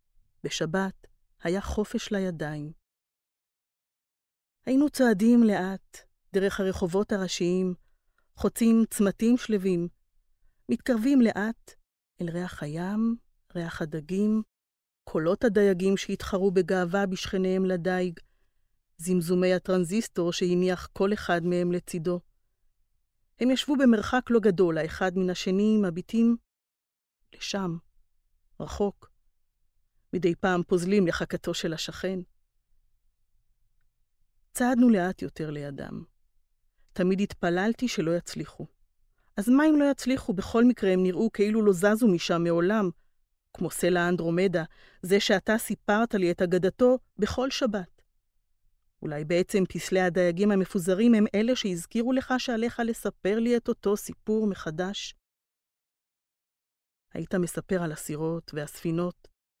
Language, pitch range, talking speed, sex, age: Hebrew, 175-220 Hz, 105 wpm, female, 30-49